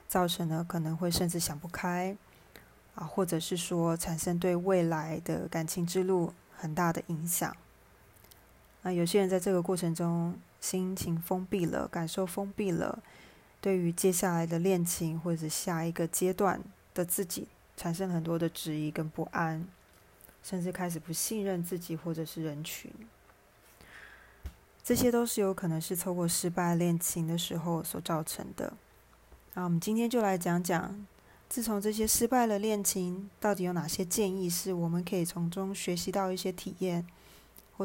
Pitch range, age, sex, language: 170-190 Hz, 20-39, female, Chinese